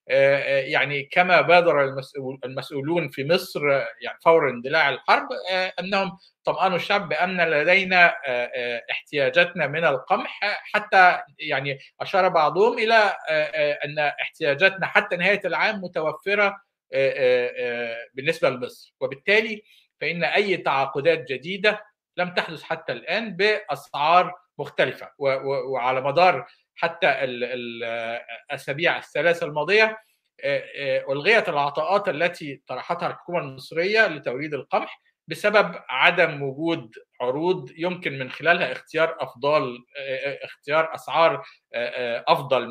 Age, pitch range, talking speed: 50-69, 140-200 Hz, 95 wpm